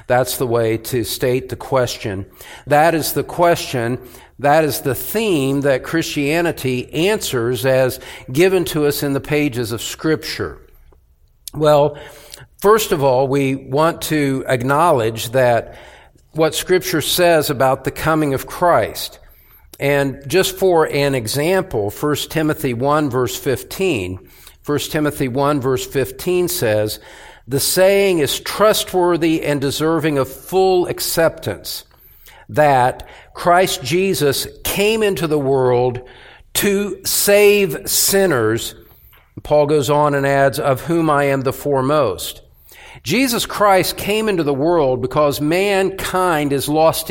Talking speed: 125 wpm